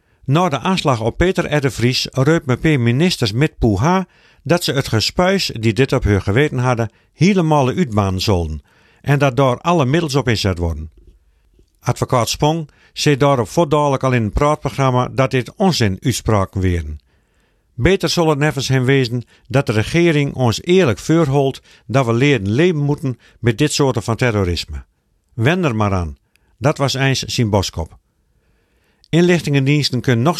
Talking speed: 160 wpm